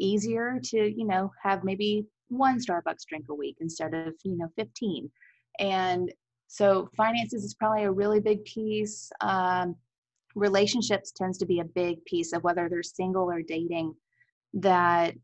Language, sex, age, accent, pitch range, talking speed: English, female, 20-39, American, 170-205 Hz, 160 wpm